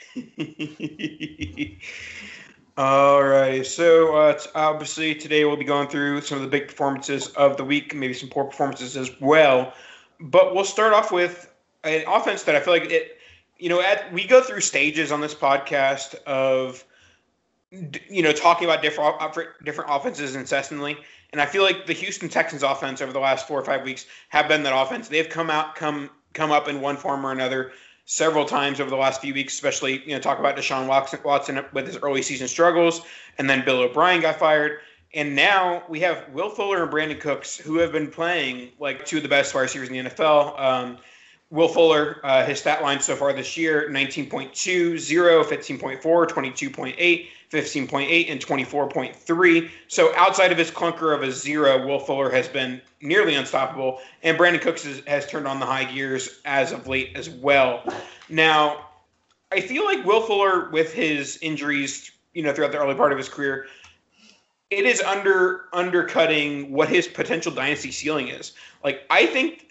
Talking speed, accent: 180 wpm, American